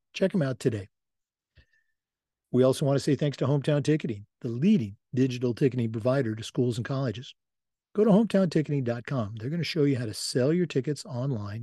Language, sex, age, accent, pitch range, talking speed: English, male, 50-69, American, 120-155 Hz, 185 wpm